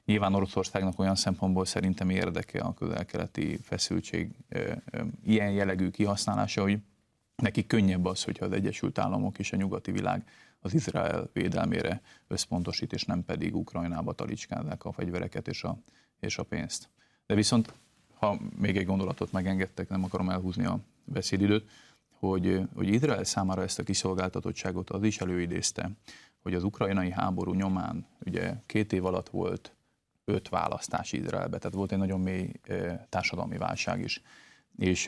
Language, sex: Hungarian, male